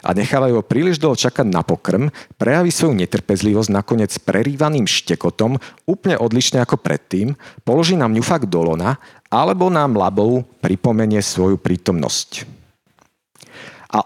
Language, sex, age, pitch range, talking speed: Slovak, male, 50-69, 100-145 Hz, 125 wpm